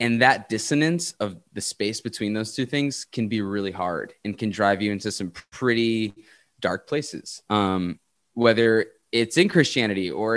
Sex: male